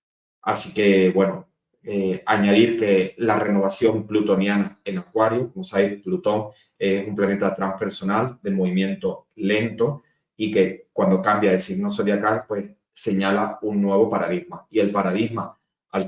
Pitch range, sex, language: 95-110 Hz, male, Spanish